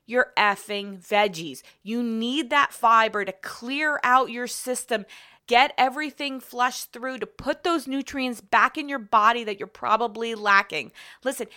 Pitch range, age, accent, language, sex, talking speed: 215-275 Hz, 20-39, American, English, female, 150 wpm